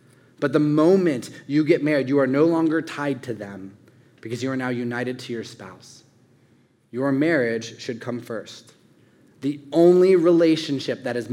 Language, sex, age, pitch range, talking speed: English, male, 30-49, 120-145 Hz, 165 wpm